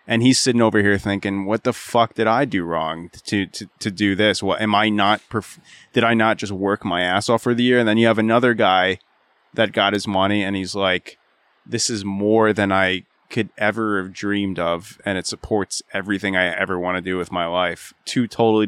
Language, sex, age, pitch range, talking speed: English, male, 20-39, 90-105 Hz, 230 wpm